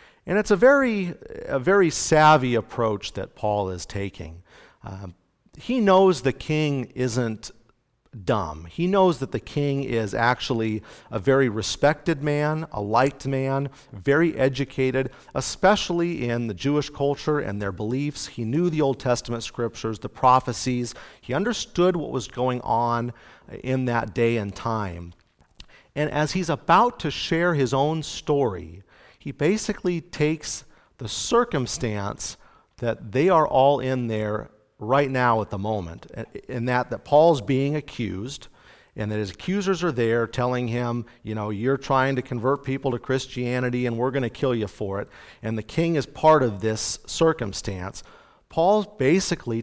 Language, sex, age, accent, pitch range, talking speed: English, male, 40-59, American, 110-150 Hz, 155 wpm